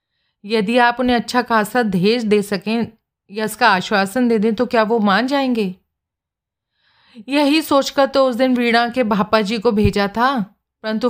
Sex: female